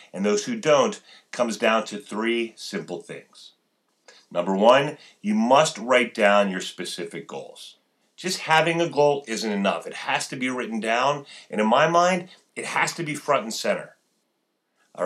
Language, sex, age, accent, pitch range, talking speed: English, male, 40-59, American, 110-155 Hz, 170 wpm